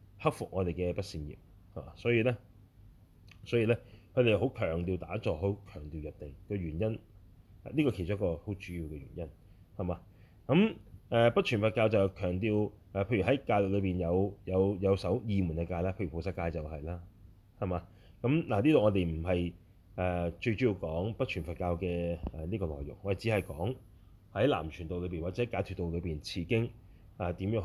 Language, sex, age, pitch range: Chinese, male, 30-49, 90-110 Hz